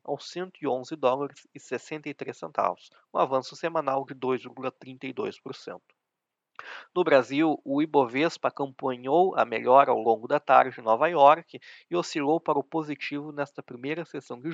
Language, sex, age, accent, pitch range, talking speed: Portuguese, male, 20-39, Brazilian, 130-160 Hz, 135 wpm